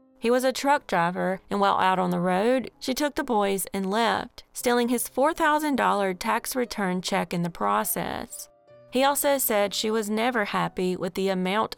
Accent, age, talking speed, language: American, 30-49, 185 wpm, English